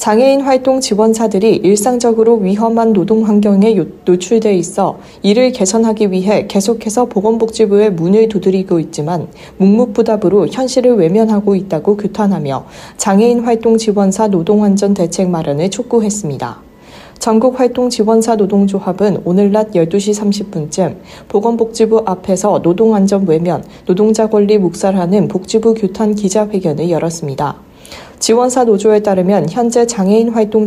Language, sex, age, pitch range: Korean, female, 40-59, 185-225 Hz